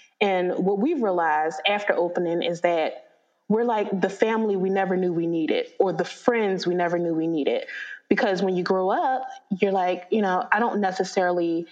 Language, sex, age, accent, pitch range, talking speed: English, female, 20-39, American, 175-220 Hz, 190 wpm